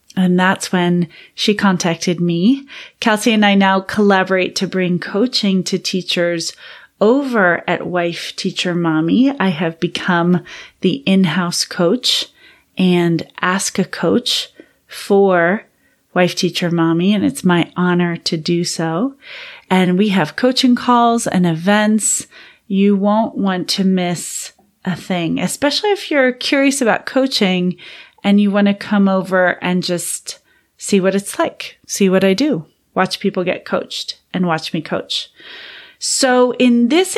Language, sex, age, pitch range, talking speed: English, female, 30-49, 175-215 Hz, 145 wpm